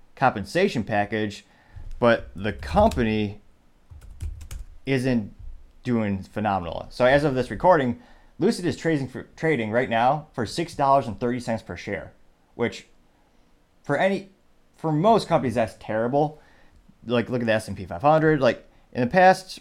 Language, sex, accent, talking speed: English, male, American, 130 wpm